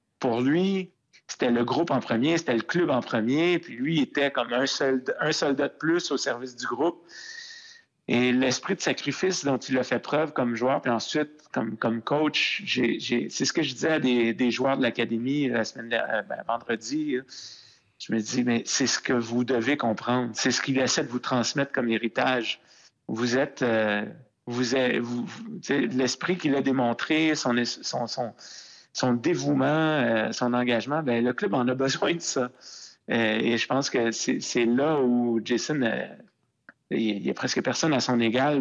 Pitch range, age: 115-135 Hz, 50-69